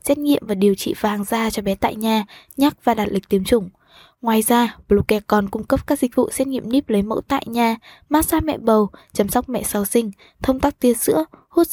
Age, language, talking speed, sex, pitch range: 20-39, Vietnamese, 240 wpm, female, 205-255 Hz